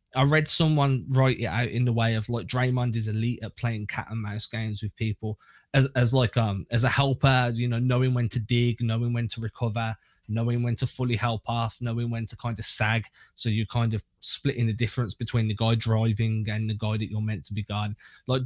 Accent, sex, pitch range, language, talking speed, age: British, male, 115-140 Hz, English, 235 wpm, 20-39